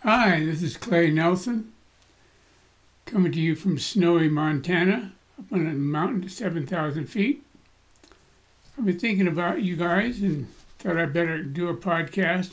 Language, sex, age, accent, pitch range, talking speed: English, male, 60-79, American, 170-205 Hz, 150 wpm